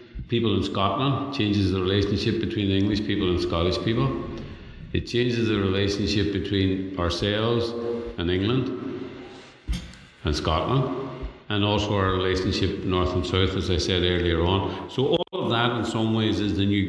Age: 50-69